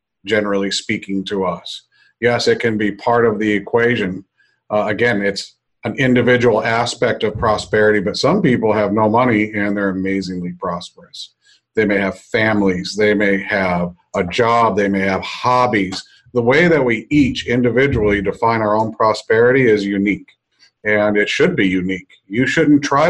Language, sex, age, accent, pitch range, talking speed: English, male, 40-59, American, 100-115 Hz, 165 wpm